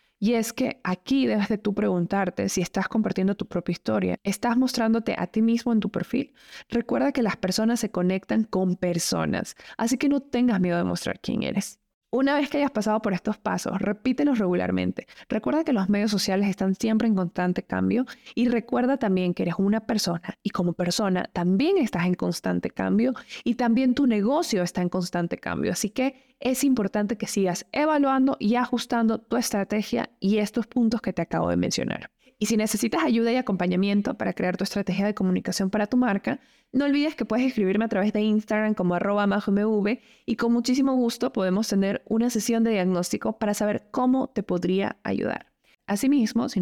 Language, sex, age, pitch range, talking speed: Spanish, female, 20-39, 190-240 Hz, 185 wpm